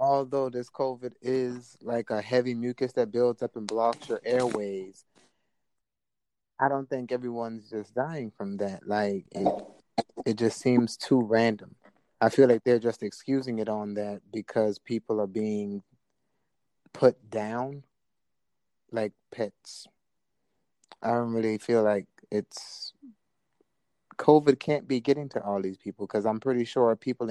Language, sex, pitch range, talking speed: English, male, 110-125 Hz, 145 wpm